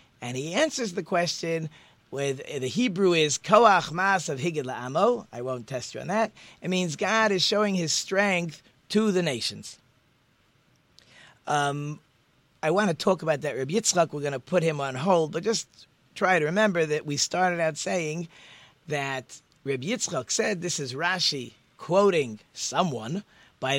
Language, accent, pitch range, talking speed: English, American, 135-185 Hz, 165 wpm